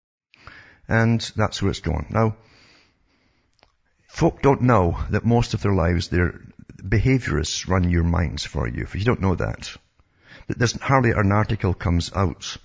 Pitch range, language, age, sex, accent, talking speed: 85-110 Hz, English, 60-79, male, British, 150 wpm